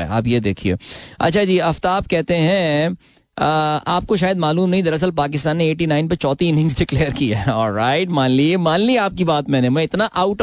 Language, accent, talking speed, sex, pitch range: Hindi, native, 205 wpm, male, 115-155 Hz